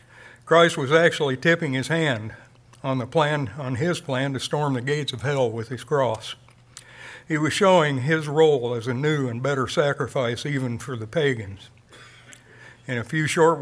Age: 60-79